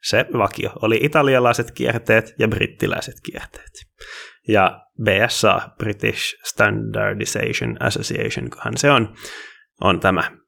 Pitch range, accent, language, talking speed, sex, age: 105-145 Hz, native, Finnish, 95 wpm, male, 20-39